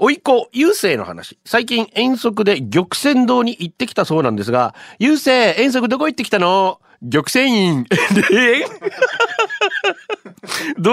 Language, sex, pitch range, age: Japanese, male, 170-250 Hz, 40-59